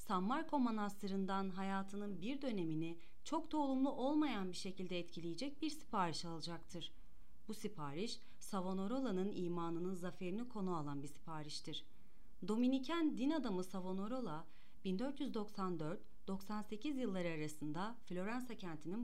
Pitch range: 165-235 Hz